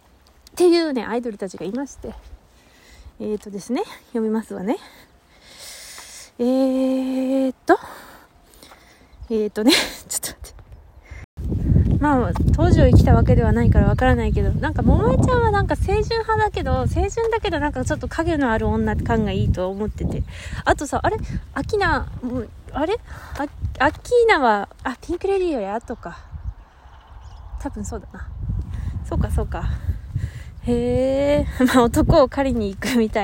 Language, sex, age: Japanese, female, 20-39